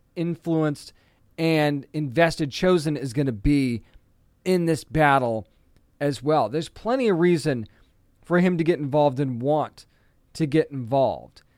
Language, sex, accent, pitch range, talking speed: English, male, American, 130-175 Hz, 140 wpm